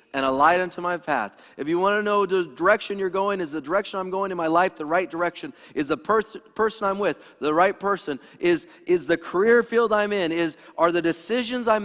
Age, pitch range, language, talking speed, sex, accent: 40-59, 130-200 Hz, English, 240 wpm, male, American